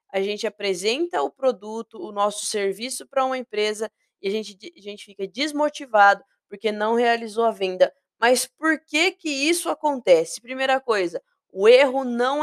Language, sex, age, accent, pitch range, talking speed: Portuguese, female, 20-39, Brazilian, 220-290 Hz, 160 wpm